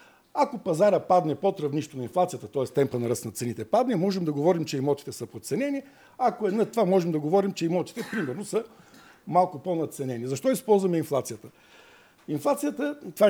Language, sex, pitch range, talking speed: Bulgarian, male, 145-195 Hz, 175 wpm